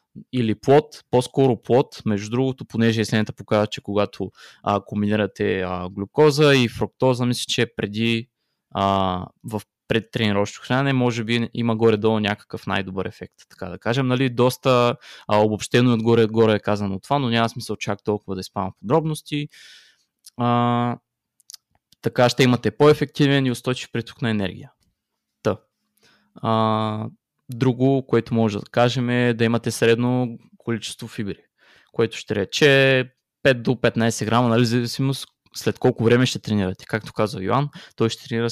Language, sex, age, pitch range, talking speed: Bulgarian, male, 20-39, 105-125 Hz, 145 wpm